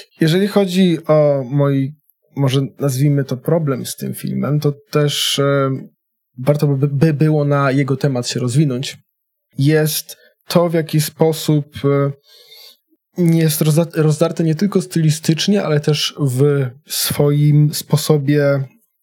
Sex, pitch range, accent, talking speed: male, 130-150 Hz, native, 115 wpm